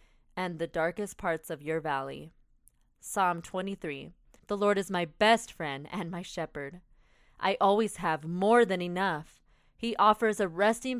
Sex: female